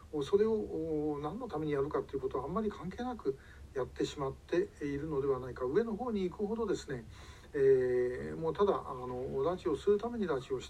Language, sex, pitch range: Japanese, male, 125-190 Hz